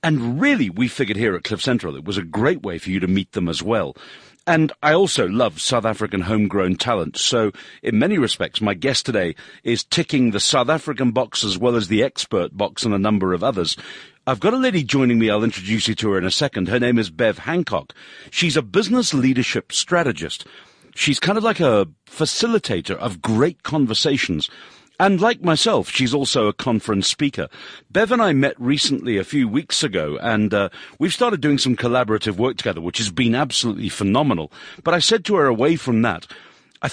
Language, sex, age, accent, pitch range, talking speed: English, male, 50-69, British, 110-160 Hz, 205 wpm